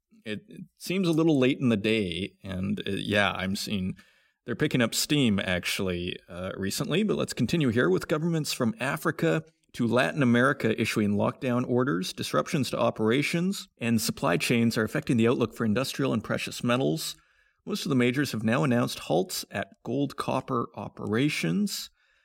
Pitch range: 110-150 Hz